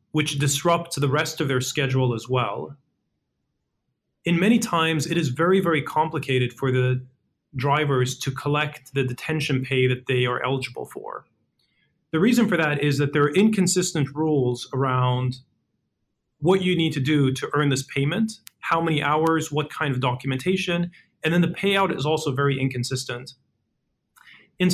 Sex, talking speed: male, 160 wpm